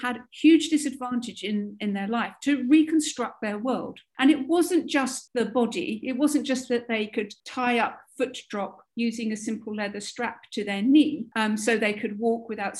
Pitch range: 215-275 Hz